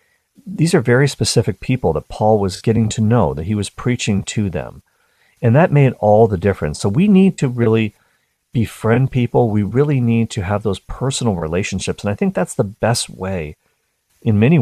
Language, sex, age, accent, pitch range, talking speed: English, male, 40-59, American, 90-115 Hz, 195 wpm